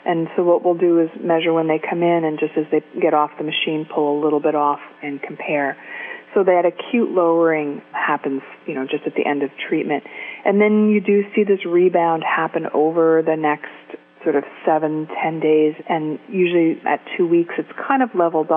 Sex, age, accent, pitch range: female, 30-49, American, 155-185 Hz